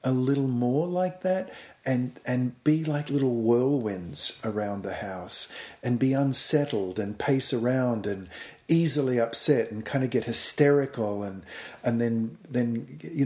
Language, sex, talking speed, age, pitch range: English, male, 150 wpm, 50-69, 110-135 Hz